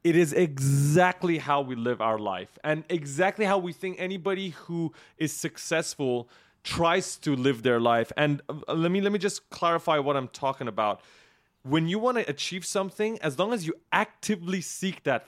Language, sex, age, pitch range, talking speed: English, male, 30-49, 140-180 Hz, 180 wpm